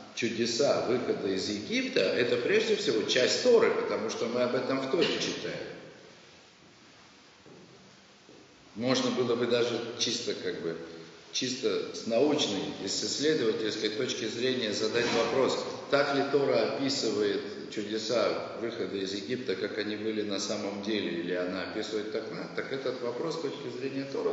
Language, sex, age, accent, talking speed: Russian, male, 50-69, native, 150 wpm